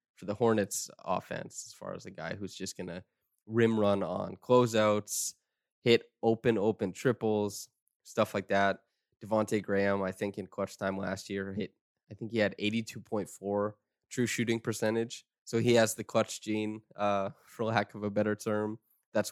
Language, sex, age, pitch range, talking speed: English, male, 20-39, 100-110 Hz, 175 wpm